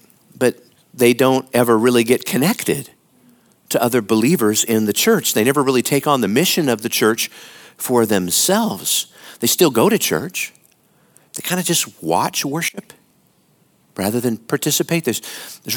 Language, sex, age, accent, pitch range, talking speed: English, male, 50-69, American, 120-160 Hz, 150 wpm